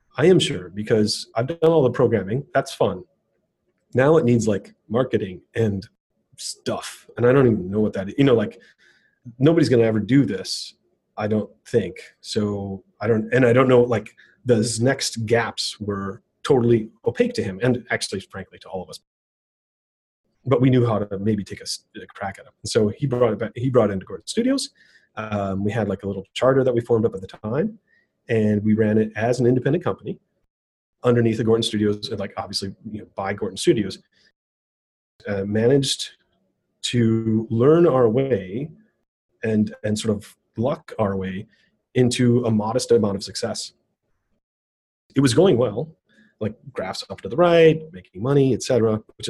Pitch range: 105-130 Hz